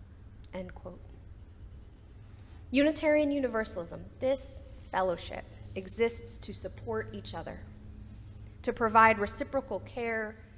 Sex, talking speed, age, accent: female, 75 wpm, 30-49, American